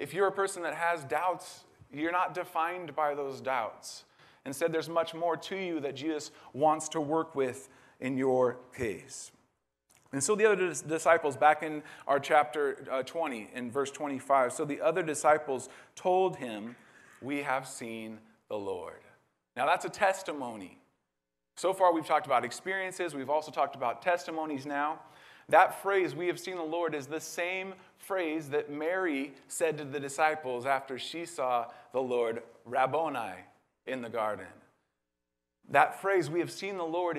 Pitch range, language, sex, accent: 130-165 Hz, English, male, American